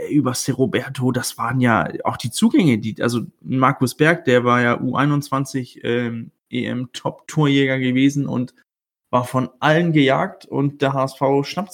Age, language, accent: 20-39, German, German